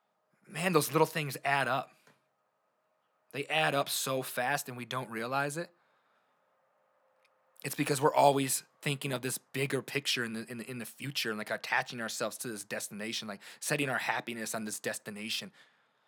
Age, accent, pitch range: 20-39, American, 125-155 Hz